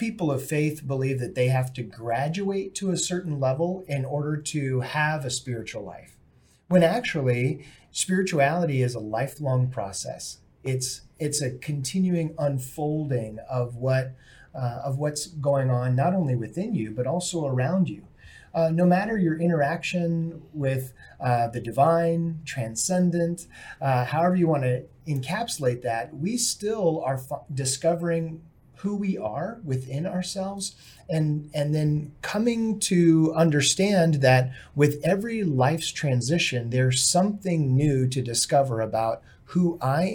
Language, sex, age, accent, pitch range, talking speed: English, male, 40-59, American, 130-170 Hz, 135 wpm